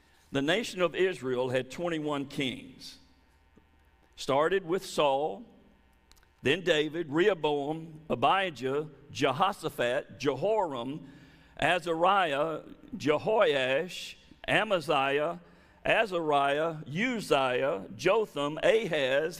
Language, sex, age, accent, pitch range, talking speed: English, male, 50-69, American, 145-215 Hz, 70 wpm